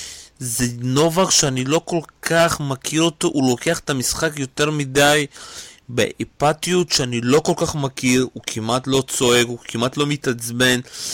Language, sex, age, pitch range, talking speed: Hebrew, male, 30-49, 125-155 Hz, 150 wpm